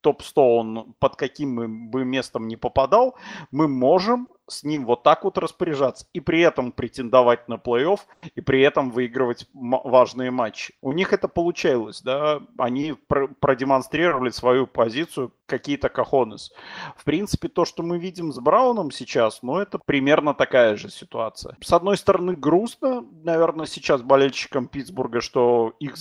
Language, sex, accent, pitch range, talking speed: Russian, male, native, 125-160 Hz, 155 wpm